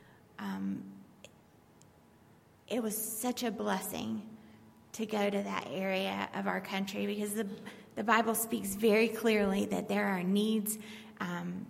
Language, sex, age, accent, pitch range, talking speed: English, female, 30-49, American, 190-220 Hz, 135 wpm